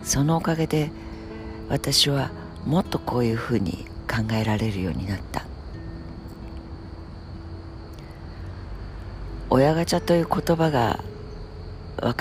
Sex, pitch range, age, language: female, 85-125 Hz, 60-79, Japanese